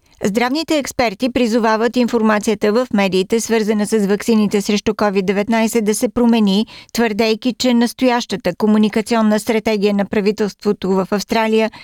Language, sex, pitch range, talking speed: Bulgarian, female, 195-230 Hz, 115 wpm